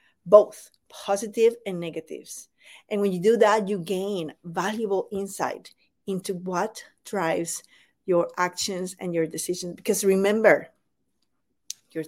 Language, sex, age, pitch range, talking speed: English, female, 40-59, 185-225 Hz, 120 wpm